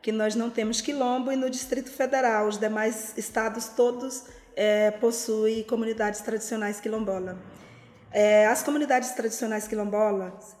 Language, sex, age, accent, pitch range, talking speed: Portuguese, female, 20-39, Brazilian, 215-260 Hz, 130 wpm